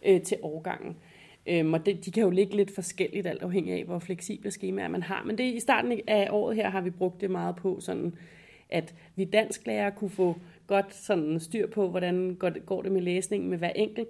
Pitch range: 180-220 Hz